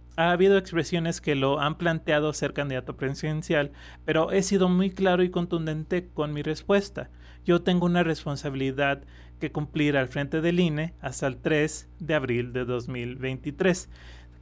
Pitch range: 130-165 Hz